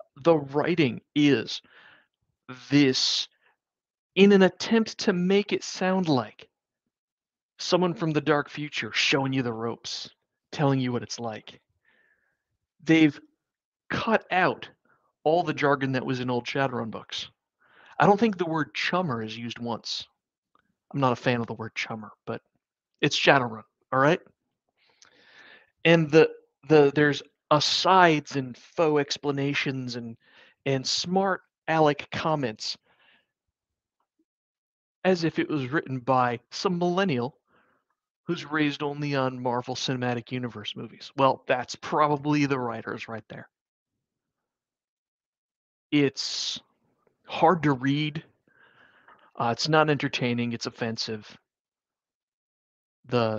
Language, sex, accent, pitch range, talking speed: English, male, American, 125-160 Hz, 120 wpm